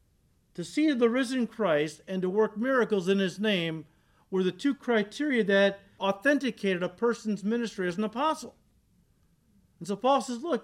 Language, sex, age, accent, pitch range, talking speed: English, male, 50-69, American, 170-230 Hz, 165 wpm